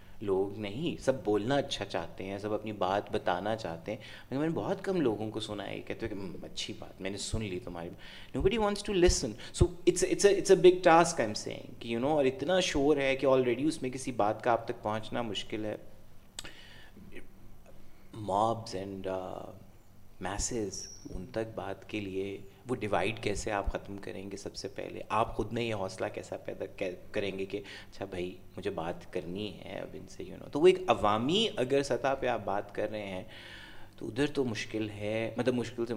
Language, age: Urdu, 30-49